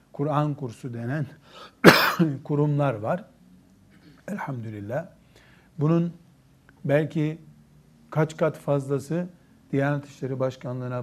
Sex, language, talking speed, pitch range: male, Turkish, 80 wpm, 125-150 Hz